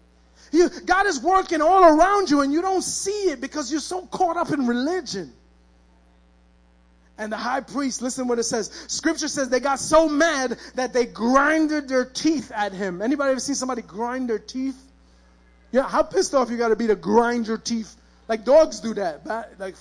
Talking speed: 200 wpm